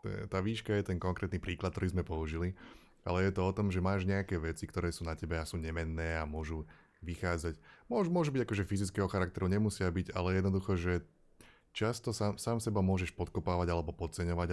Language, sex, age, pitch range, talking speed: Slovak, male, 20-39, 85-95 Hz, 185 wpm